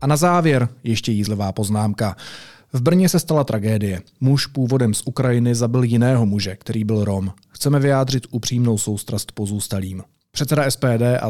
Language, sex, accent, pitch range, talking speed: Czech, male, native, 110-140 Hz, 155 wpm